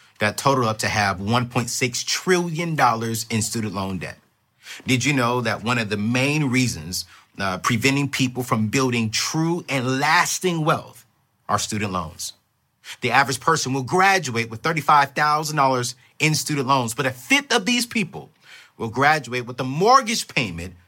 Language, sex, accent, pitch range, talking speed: English, male, American, 120-170 Hz, 155 wpm